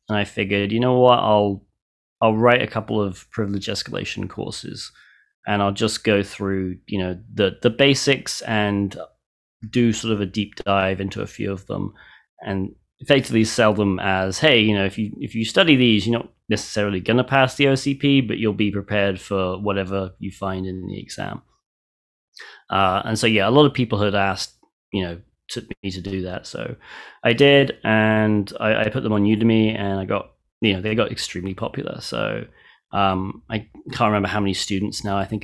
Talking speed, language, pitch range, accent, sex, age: 195 wpm, English, 95-115 Hz, British, male, 30-49